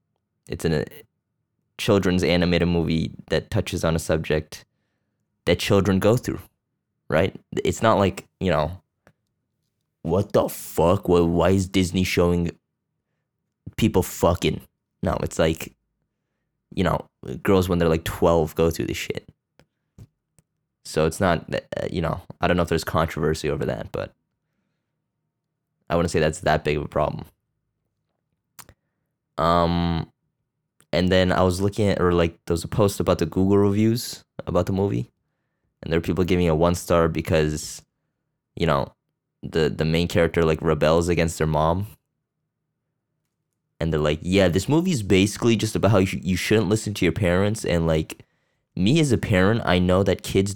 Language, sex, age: English, male, 20-39